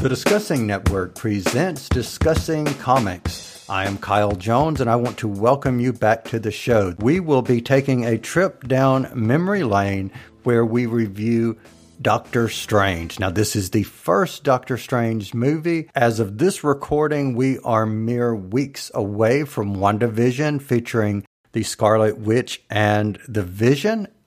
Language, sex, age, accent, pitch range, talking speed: English, male, 50-69, American, 110-135 Hz, 150 wpm